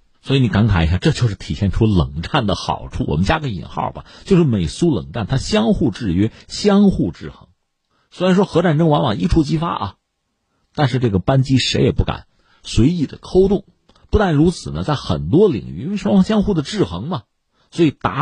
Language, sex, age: Chinese, male, 50-69